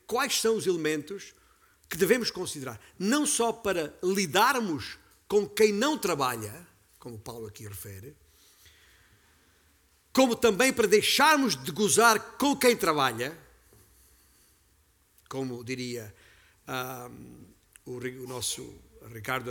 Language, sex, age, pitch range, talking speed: Portuguese, male, 50-69, 110-185 Hz, 110 wpm